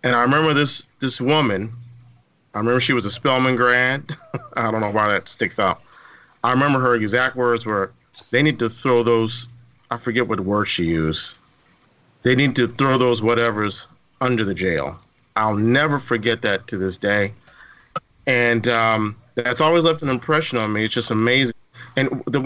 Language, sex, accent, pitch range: English, male, American, 115-140 Hz